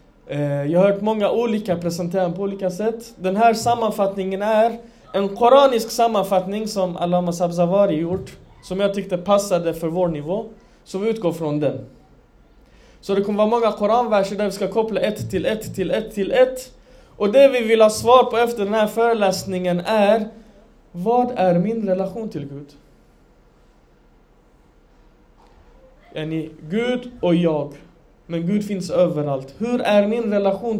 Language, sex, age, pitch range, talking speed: Swedish, male, 20-39, 175-220 Hz, 155 wpm